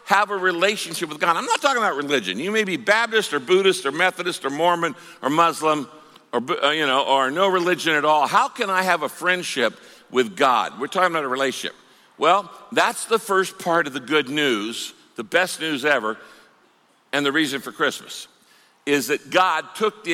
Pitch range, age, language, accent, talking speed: 155-200 Hz, 60-79, English, American, 195 wpm